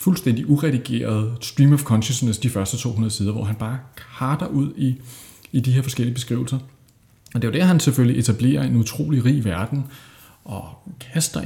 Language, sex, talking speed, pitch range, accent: Danish, male, 180 wpm, 110-135 Hz, native